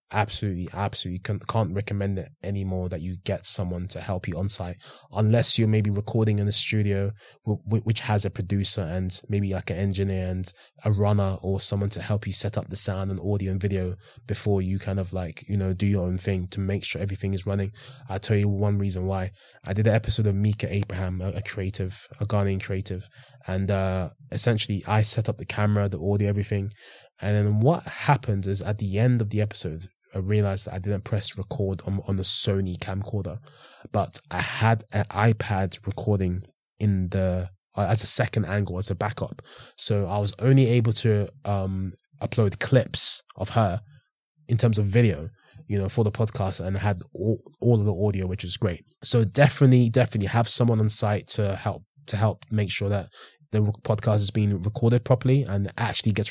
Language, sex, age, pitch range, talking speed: English, male, 20-39, 95-110 Hz, 200 wpm